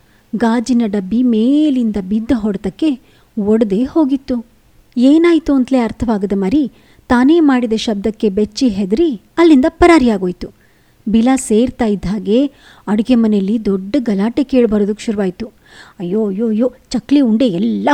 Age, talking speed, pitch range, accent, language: 30-49, 105 wpm, 215-280 Hz, native, Kannada